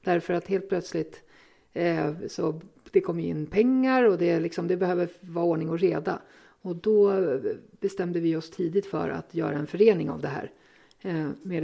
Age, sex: 50-69, female